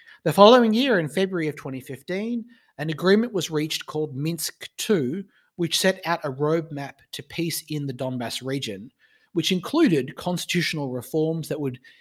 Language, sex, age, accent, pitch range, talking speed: English, male, 30-49, Australian, 135-170 Hz, 155 wpm